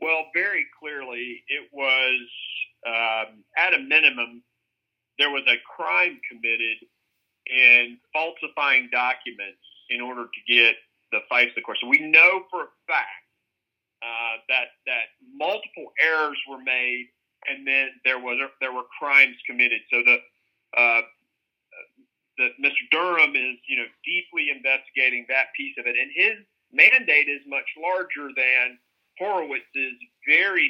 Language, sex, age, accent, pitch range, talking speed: English, male, 40-59, American, 120-160 Hz, 140 wpm